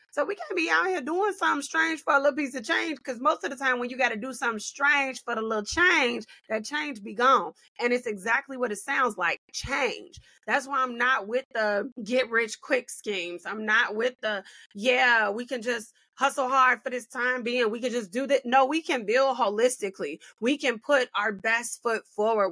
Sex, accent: female, American